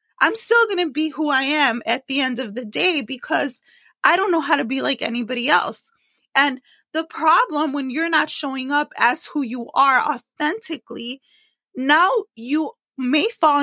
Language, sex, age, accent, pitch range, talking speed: English, female, 30-49, American, 255-315 Hz, 180 wpm